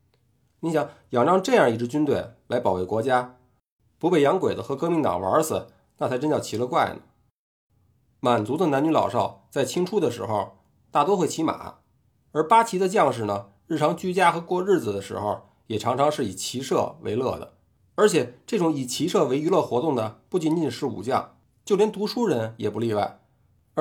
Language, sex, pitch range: Chinese, male, 110-165 Hz